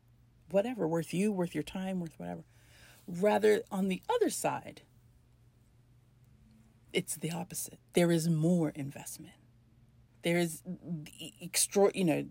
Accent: American